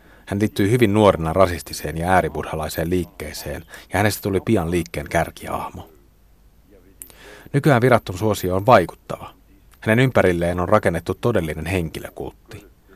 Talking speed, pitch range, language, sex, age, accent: 115 wpm, 85-110 Hz, Finnish, male, 30-49, native